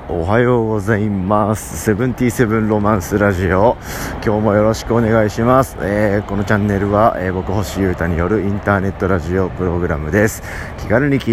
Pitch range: 85-115 Hz